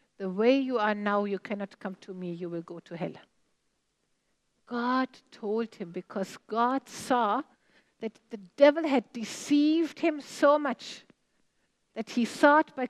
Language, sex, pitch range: English, female, 240-305 Hz